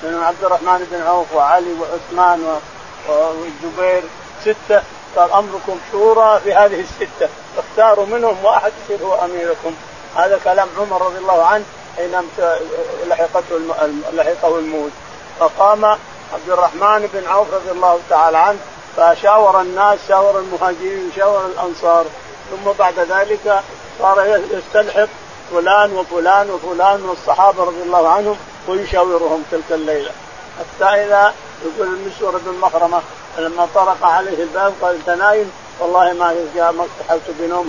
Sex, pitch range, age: male, 170-205 Hz, 40-59